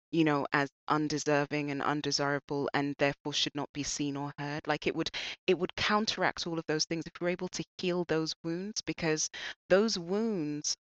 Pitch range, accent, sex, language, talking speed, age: 140-175 Hz, British, female, English, 195 wpm, 20-39